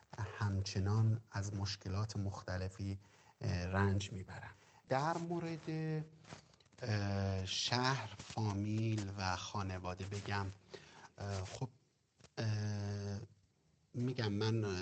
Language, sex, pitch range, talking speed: English, male, 95-105 Hz, 65 wpm